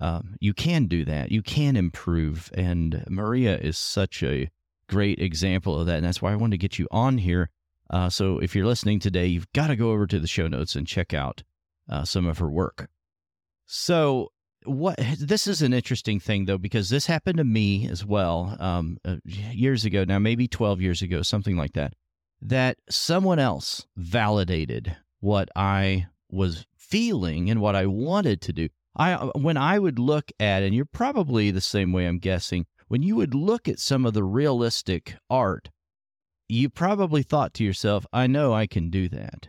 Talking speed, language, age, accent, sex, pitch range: 190 wpm, English, 40-59, American, male, 90-135 Hz